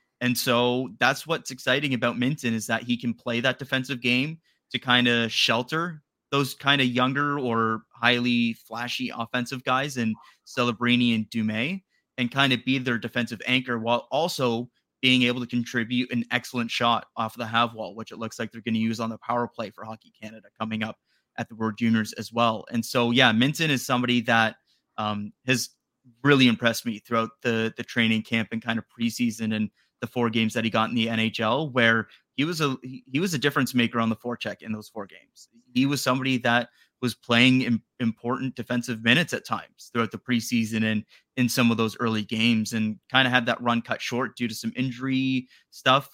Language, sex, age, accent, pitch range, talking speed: English, male, 30-49, American, 115-130 Hz, 205 wpm